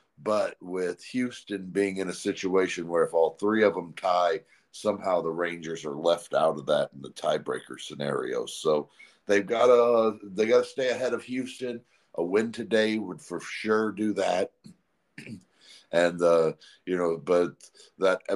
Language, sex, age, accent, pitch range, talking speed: English, male, 50-69, American, 95-115 Hz, 165 wpm